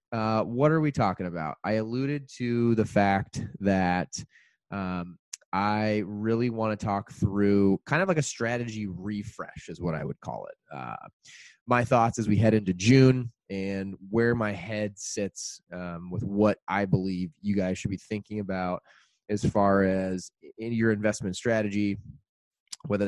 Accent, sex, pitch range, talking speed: American, male, 90-115 Hz, 165 wpm